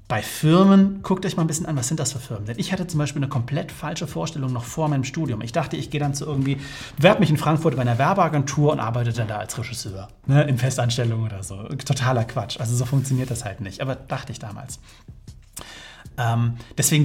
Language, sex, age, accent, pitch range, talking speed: German, male, 30-49, German, 120-150 Hz, 225 wpm